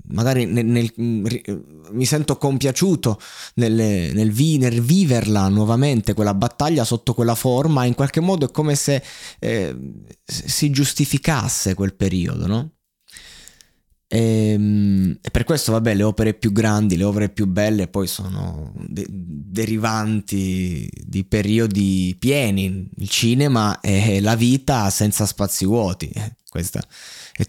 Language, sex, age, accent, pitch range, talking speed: Italian, male, 20-39, native, 100-130 Hz, 120 wpm